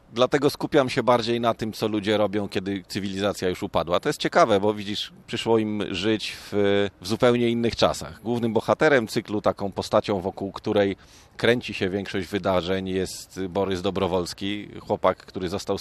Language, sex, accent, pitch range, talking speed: Polish, male, native, 95-115 Hz, 165 wpm